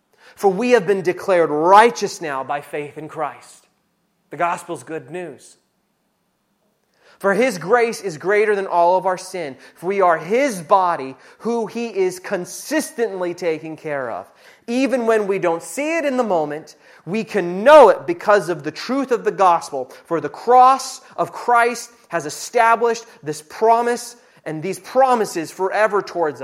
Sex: male